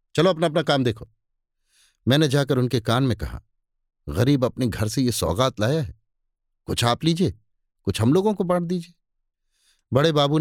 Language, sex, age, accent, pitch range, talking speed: Hindi, male, 50-69, native, 110-150 Hz, 175 wpm